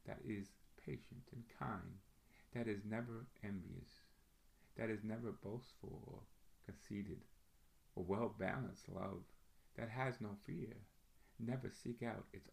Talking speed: 130 wpm